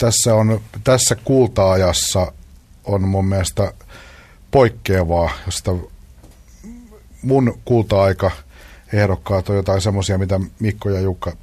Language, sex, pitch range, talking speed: Finnish, male, 90-105 Hz, 95 wpm